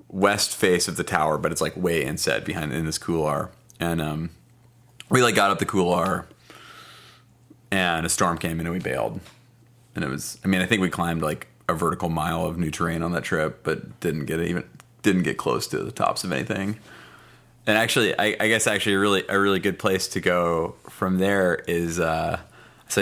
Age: 30-49